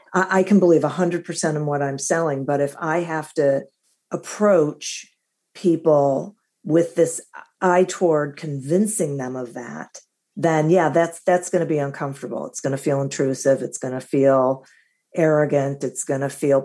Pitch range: 140-175 Hz